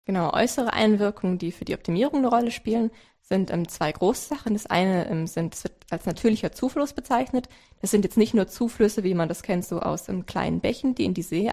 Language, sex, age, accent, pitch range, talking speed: German, female, 20-39, German, 180-225 Hz, 225 wpm